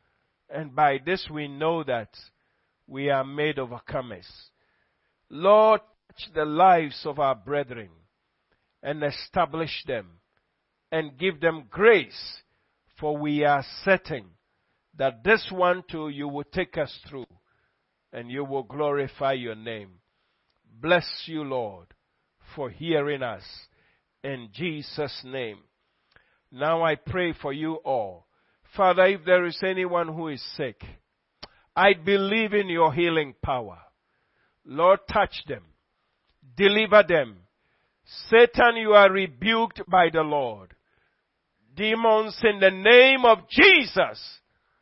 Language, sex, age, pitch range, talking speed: English, male, 50-69, 140-200 Hz, 120 wpm